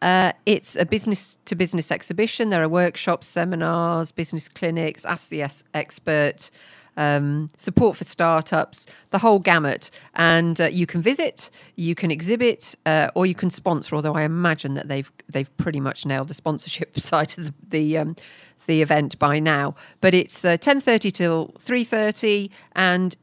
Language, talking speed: English, 170 wpm